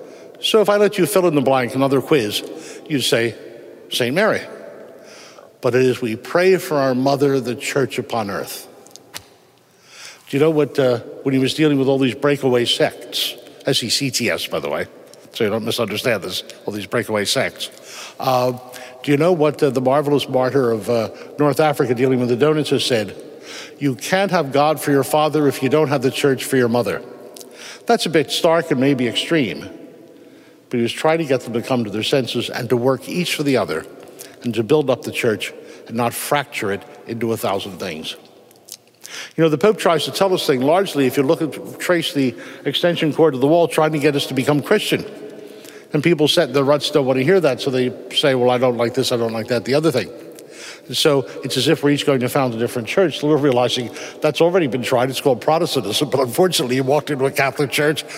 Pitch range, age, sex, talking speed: 125-155 Hz, 60-79, male, 220 wpm